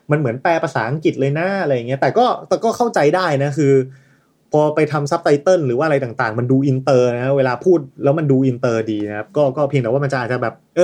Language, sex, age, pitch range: Thai, male, 20-39, 125-160 Hz